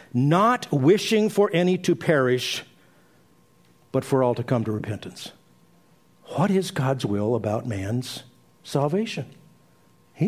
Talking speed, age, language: 125 wpm, 50-69, English